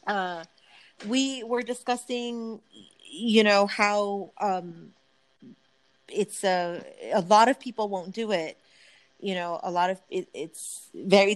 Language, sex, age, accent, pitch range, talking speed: English, female, 30-49, American, 175-230 Hz, 130 wpm